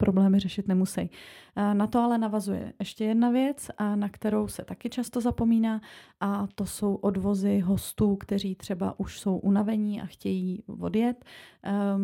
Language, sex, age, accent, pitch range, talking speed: Czech, female, 30-49, native, 195-215 Hz, 145 wpm